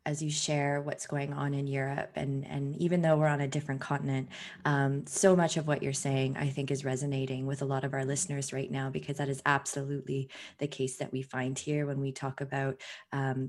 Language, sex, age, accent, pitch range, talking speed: English, female, 20-39, American, 140-155 Hz, 225 wpm